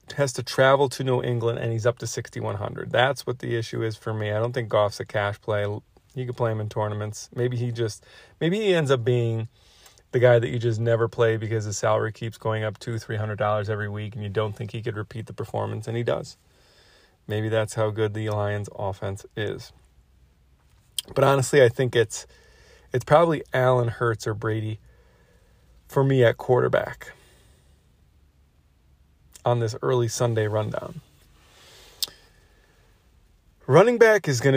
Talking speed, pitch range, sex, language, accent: 175 wpm, 105-125 Hz, male, English, American